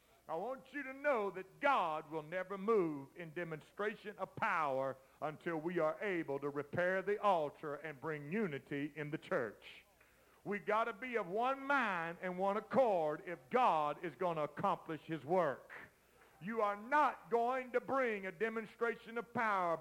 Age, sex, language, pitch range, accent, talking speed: 50-69, male, English, 170-220 Hz, American, 170 wpm